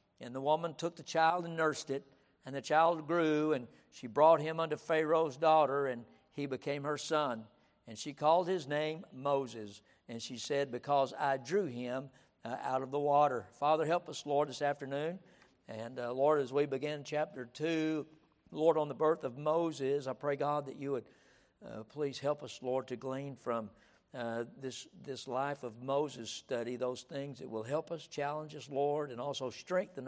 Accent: American